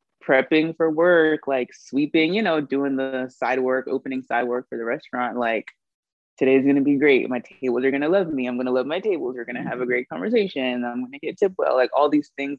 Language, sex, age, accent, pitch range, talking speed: English, female, 20-39, American, 125-155 Hz, 230 wpm